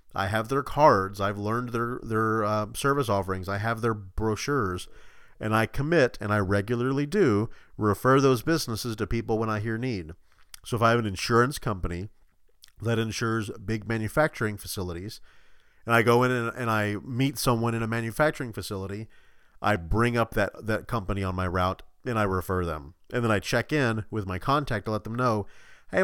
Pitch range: 100-120 Hz